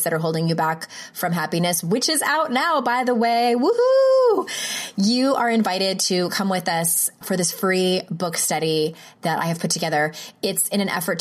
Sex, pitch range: female, 160-205 Hz